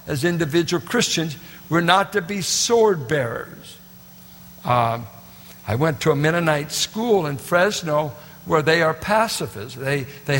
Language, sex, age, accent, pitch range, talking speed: English, male, 60-79, American, 145-180 Hz, 140 wpm